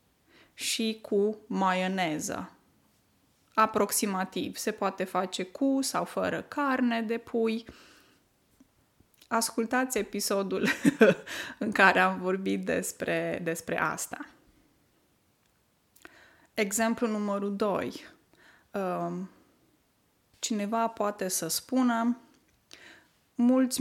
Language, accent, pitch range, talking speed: Romanian, native, 185-225 Hz, 75 wpm